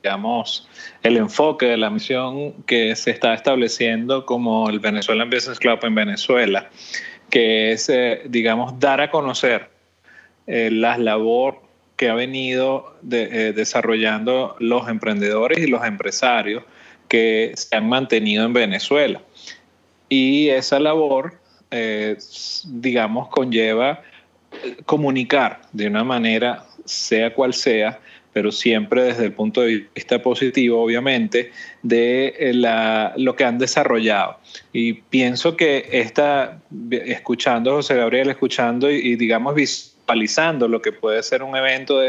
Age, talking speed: 30-49, 130 wpm